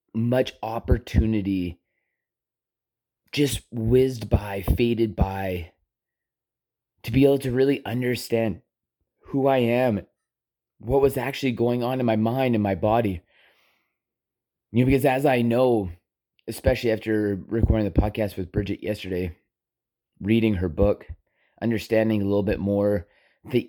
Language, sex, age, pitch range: English, male, 30-49, 100-120 Hz